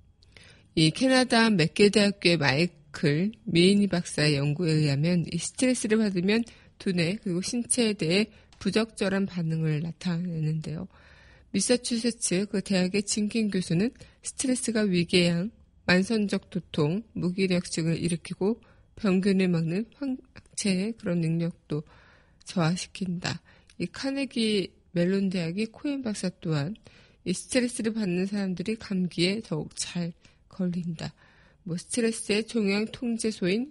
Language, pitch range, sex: Korean, 170-210 Hz, female